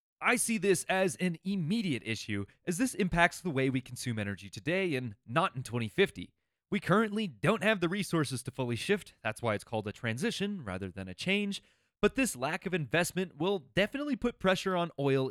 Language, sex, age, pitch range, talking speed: English, male, 30-49, 120-190 Hz, 195 wpm